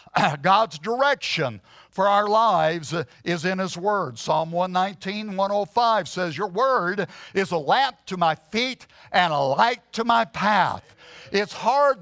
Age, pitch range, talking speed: 60-79, 185-240 Hz, 145 wpm